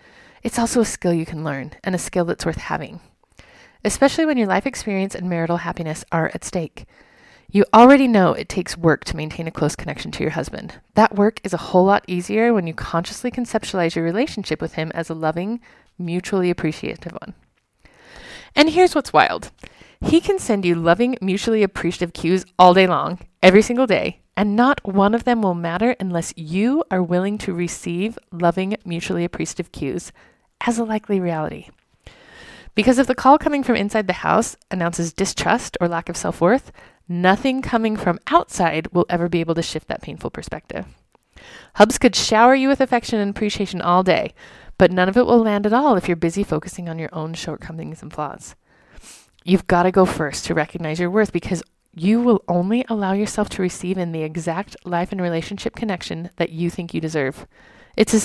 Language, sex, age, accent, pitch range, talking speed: English, female, 30-49, American, 170-220 Hz, 190 wpm